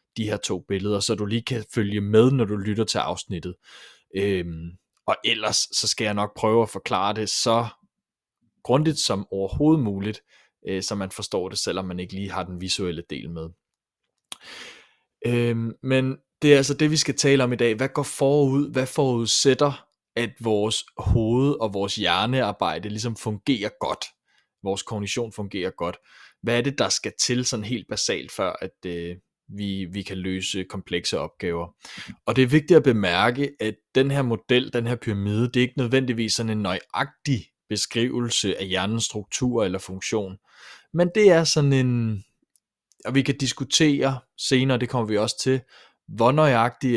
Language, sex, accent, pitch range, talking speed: Danish, male, native, 100-130 Hz, 175 wpm